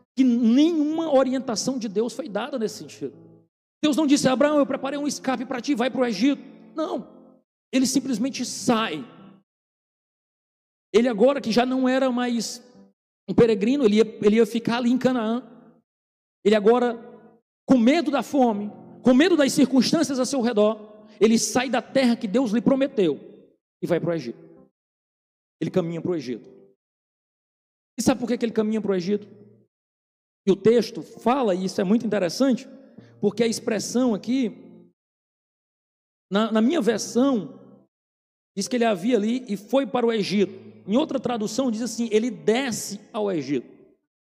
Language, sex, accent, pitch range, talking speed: Portuguese, male, Brazilian, 210-265 Hz, 165 wpm